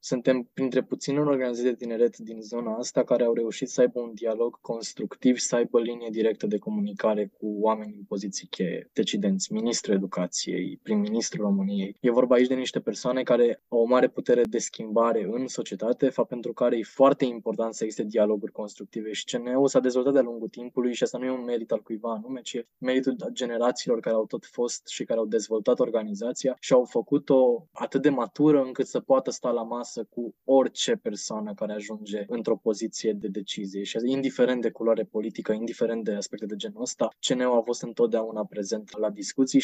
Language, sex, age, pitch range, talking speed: Romanian, male, 20-39, 110-130 Hz, 190 wpm